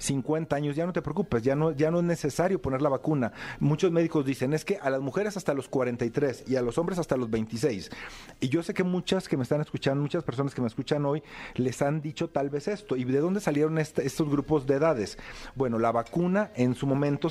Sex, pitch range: male, 125-155 Hz